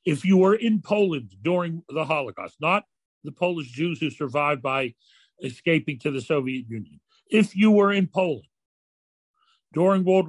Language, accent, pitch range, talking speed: English, American, 145-200 Hz, 155 wpm